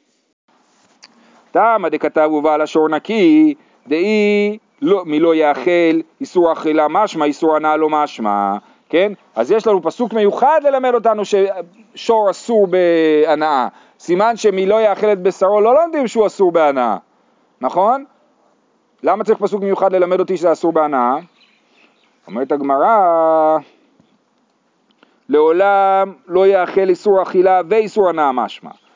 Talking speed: 120 wpm